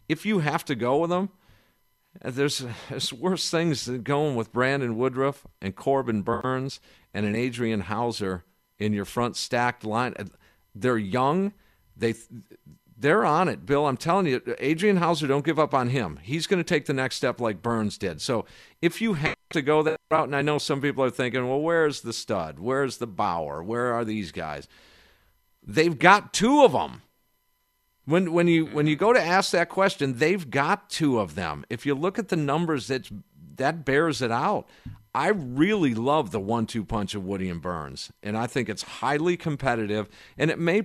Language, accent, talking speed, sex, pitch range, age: English, American, 190 wpm, male, 110-155 Hz, 50-69